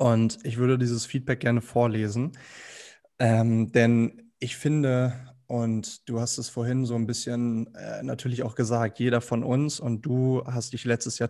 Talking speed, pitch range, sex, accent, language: 170 wpm, 115-130 Hz, male, German, German